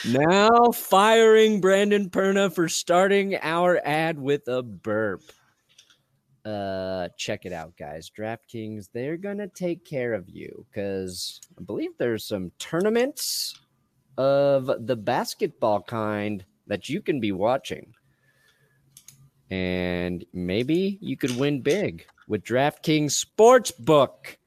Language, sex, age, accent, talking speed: English, male, 30-49, American, 120 wpm